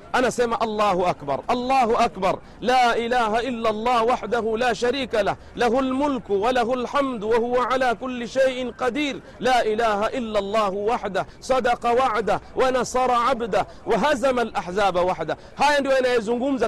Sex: male